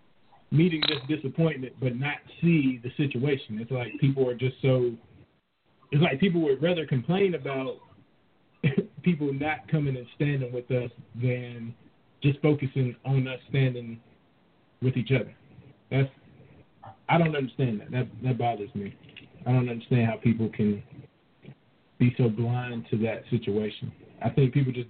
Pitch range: 120-140 Hz